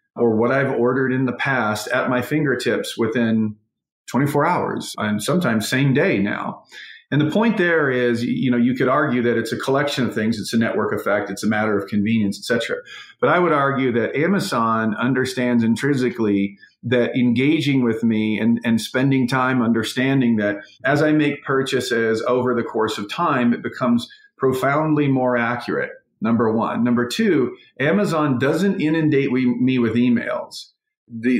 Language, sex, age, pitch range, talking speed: English, male, 40-59, 120-150 Hz, 170 wpm